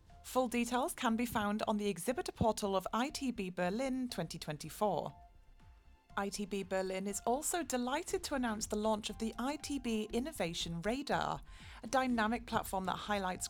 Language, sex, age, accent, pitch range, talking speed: English, female, 30-49, British, 180-245 Hz, 140 wpm